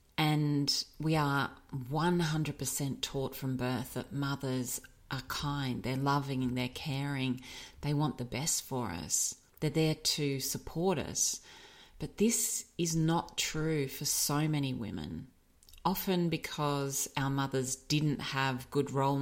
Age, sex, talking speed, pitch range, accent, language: 40-59, female, 135 wpm, 130-145 Hz, Australian, English